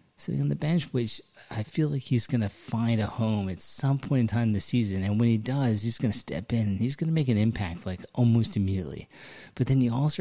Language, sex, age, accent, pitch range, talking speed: English, male, 30-49, American, 95-125 Hz, 265 wpm